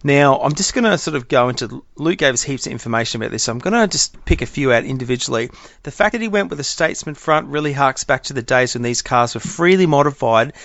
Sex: male